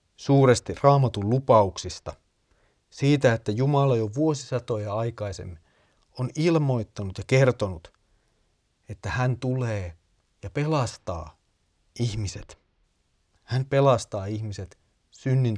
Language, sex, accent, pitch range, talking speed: Finnish, male, native, 100-130 Hz, 90 wpm